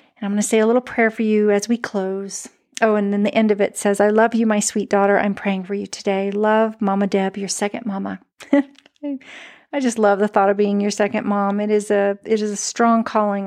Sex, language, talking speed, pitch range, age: female, English, 245 wpm, 200-225 Hz, 40-59